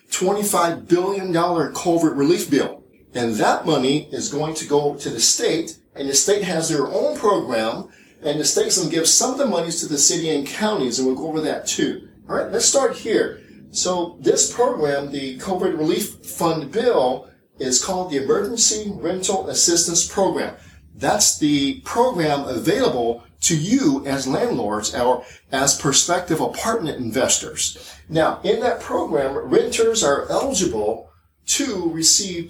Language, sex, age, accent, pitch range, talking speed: English, male, 40-59, American, 140-200 Hz, 160 wpm